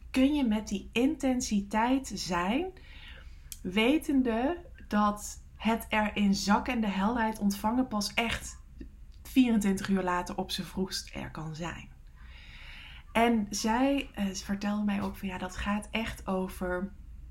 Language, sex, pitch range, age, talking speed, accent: English, female, 185-220 Hz, 20-39, 130 wpm, Dutch